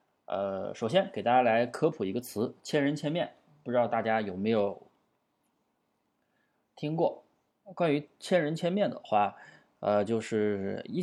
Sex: male